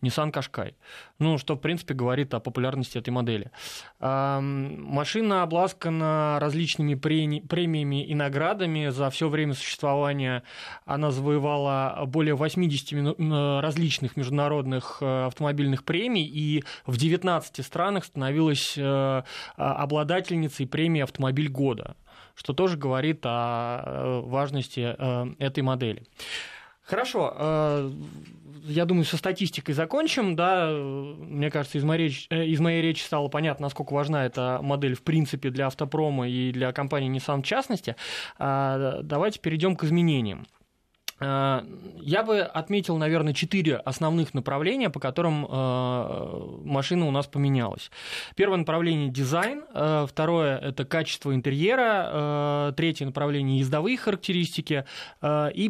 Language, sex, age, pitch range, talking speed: Russian, male, 20-39, 135-160 Hz, 110 wpm